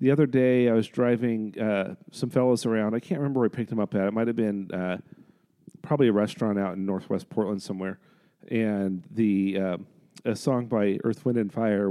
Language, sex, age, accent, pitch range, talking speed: English, male, 40-59, American, 95-120 Hz, 210 wpm